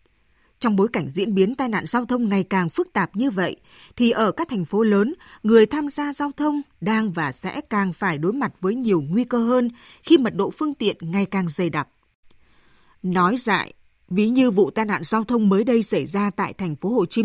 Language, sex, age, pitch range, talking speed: Vietnamese, female, 20-39, 185-240 Hz, 225 wpm